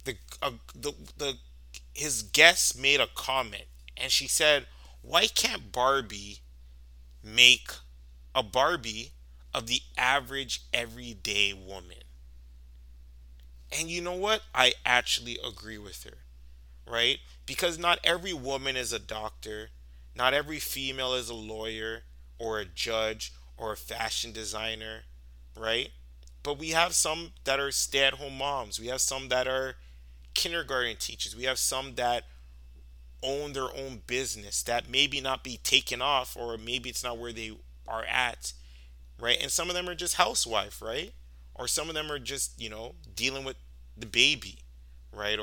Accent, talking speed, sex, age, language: American, 150 wpm, male, 20-39, English